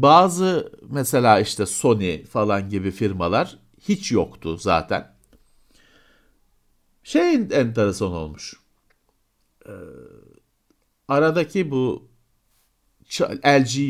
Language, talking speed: Turkish, 75 wpm